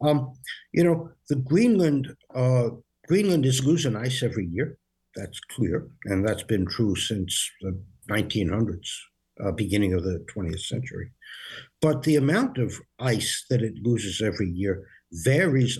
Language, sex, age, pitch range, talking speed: English, male, 60-79, 115-160 Hz, 135 wpm